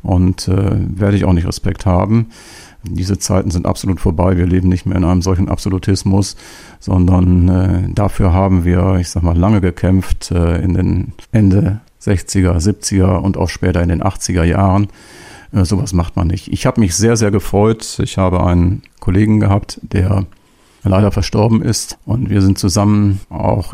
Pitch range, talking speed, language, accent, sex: 90-105 Hz, 175 wpm, German, German, male